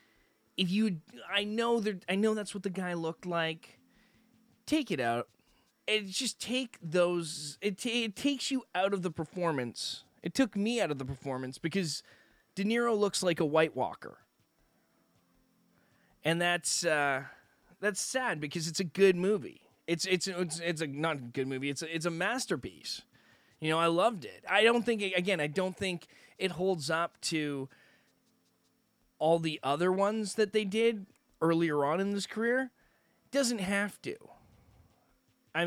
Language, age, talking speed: English, 20-39, 175 wpm